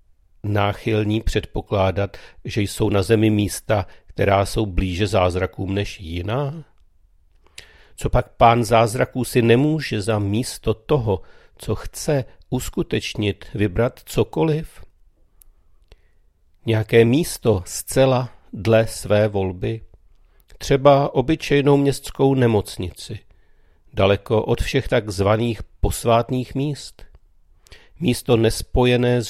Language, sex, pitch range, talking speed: Czech, male, 95-120 Hz, 90 wpm